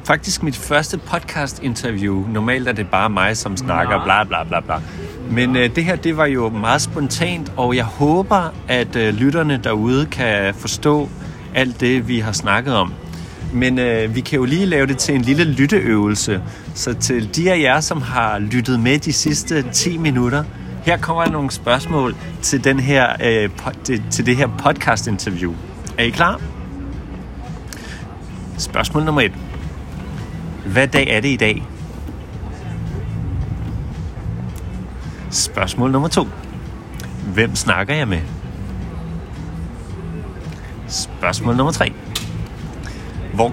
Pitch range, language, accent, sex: 95-135 Hz, Danish, native, male